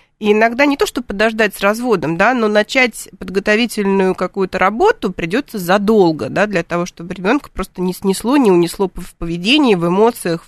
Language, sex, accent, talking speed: Russian, female, native, 170 wpm